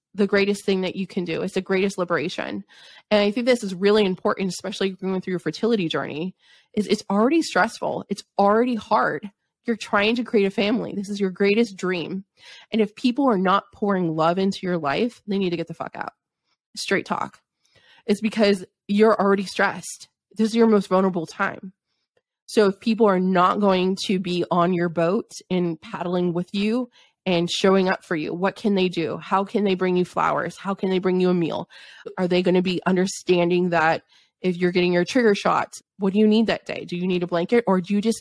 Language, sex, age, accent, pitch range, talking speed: English, female, 20-39, American, 175-205 Hz, 215 wpm